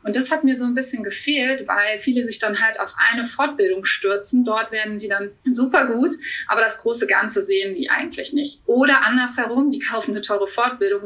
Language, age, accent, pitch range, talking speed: German, 20-39, German, 200-270 Hz, 205 wpm